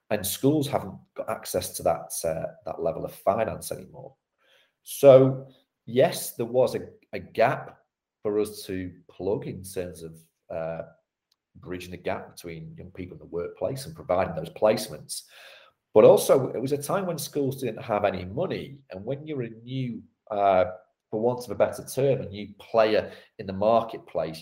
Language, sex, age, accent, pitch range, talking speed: English, male, 40-59, British, 90-130 Hz, 175 wpm